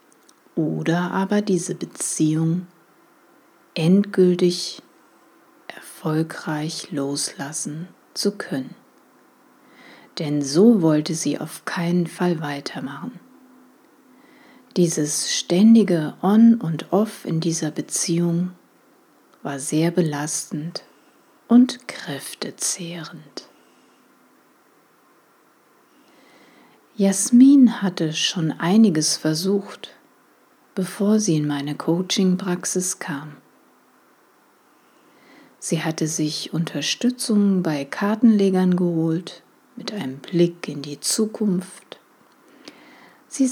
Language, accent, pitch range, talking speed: German, German, 160-215 Hz, 75 wpm